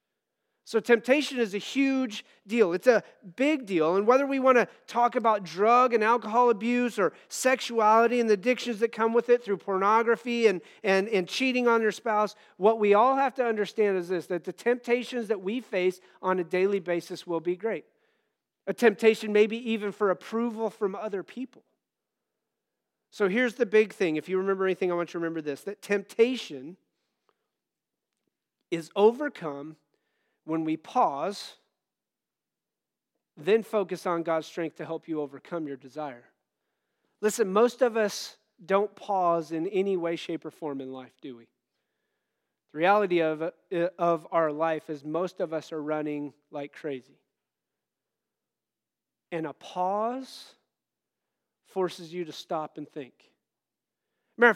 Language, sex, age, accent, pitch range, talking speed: English, male, 40-59, American, 170-230 Hz, 155 wpm